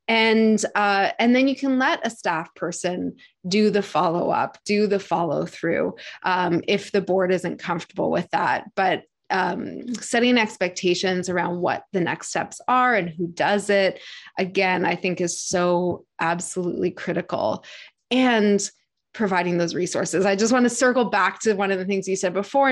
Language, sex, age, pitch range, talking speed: English, female, 20-39, 185-220 Hz, 165 wpm